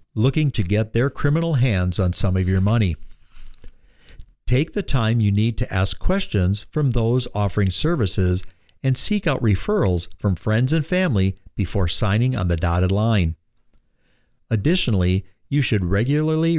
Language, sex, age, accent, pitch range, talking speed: English, male, 50-69, American, 95-130 Hz, 150 wpm